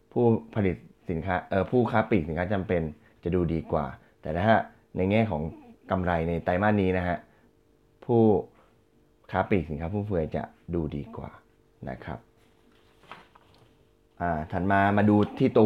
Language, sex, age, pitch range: Thai, male, 20-39, 85-110 Hz